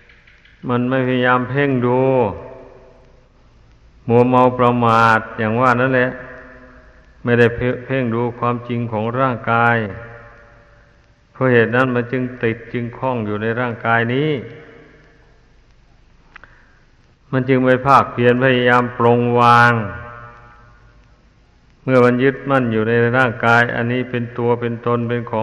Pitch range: 115-125 Hz